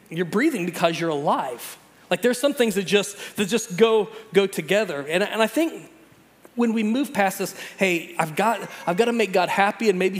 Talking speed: 210 wpm